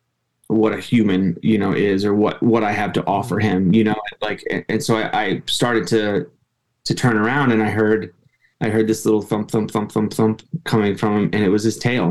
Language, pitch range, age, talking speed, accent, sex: English, 105-125 Hz, 20-39, 230 wpm, American, male